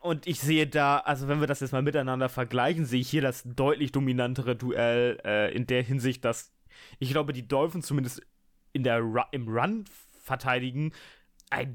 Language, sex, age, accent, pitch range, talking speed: German, male, 20-39, German, 125-150 Hz, 180 wpm